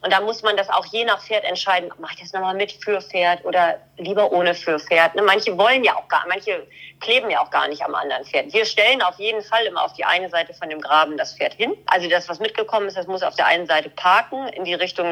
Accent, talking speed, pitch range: German, 265 wpm, 175-235 Hz